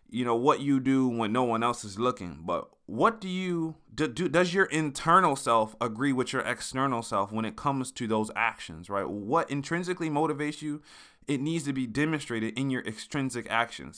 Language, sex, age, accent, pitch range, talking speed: English, male, 20-39, American, 115-155 Hz, 200 wpm